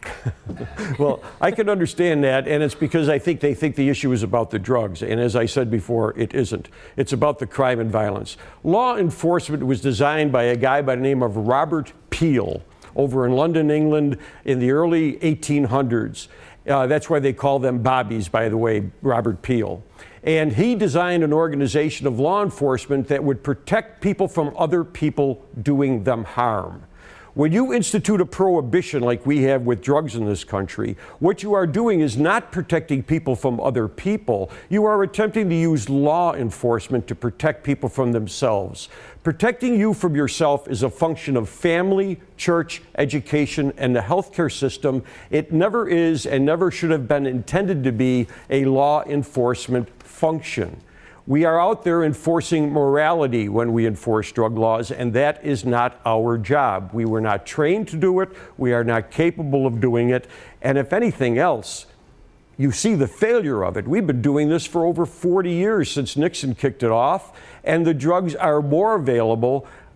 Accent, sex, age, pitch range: American, male, 50-69, 125-165 Hz